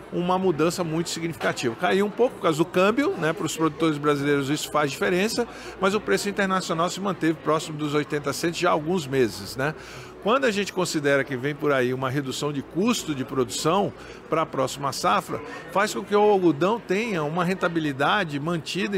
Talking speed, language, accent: 195 wpm, Portuguese, Brazilian